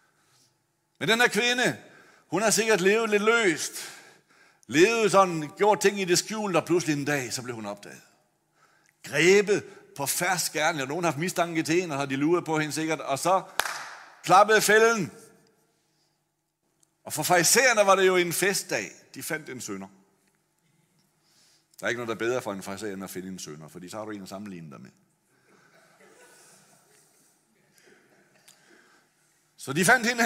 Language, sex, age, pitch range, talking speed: Danish, male, 60-79, 125-190 Hz, 160 wpm